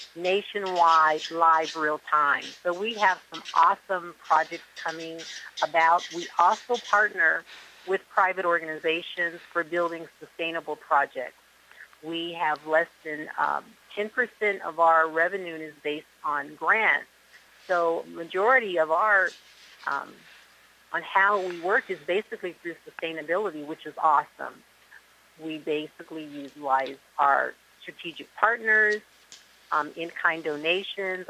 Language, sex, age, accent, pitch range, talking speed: English, female, 50-69, American, 160-190 Hz, 115 wpm